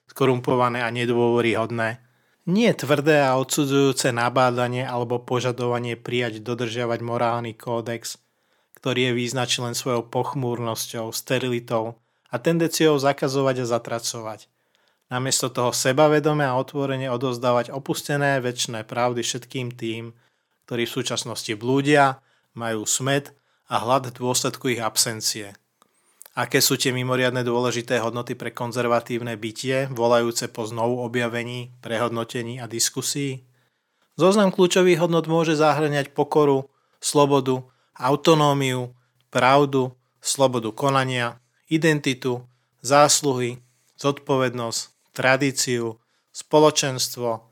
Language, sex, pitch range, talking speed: Slovak, male, 120-140 Hz, 100 wpm